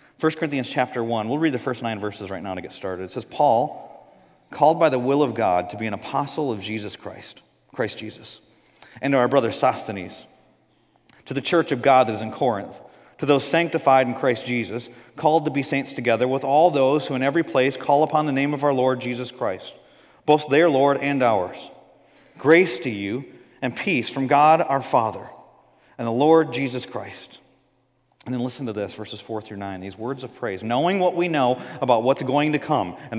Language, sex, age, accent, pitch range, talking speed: English, male, 40-59, American, 125-165 Hz, 210 wpm